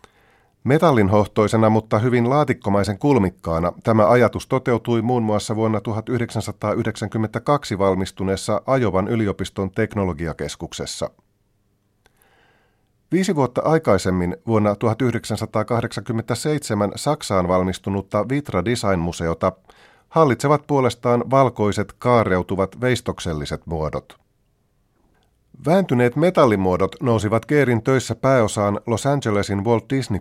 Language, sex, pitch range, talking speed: Finnish, male, 100-120 Hz, 80 wpm